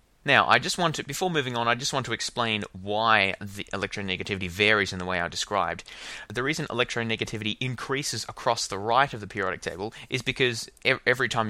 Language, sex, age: English, male, 20-39